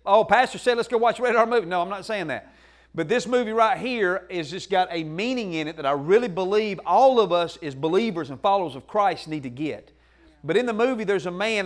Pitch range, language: 170-215 Hz, English